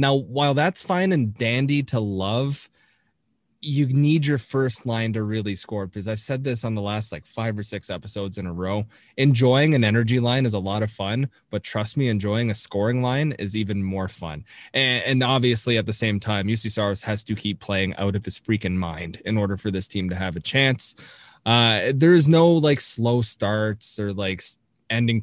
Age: 20-39